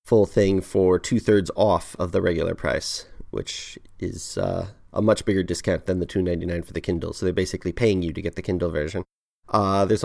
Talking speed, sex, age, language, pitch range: 195 wpm, male, 30-49, English, 90-110 Hz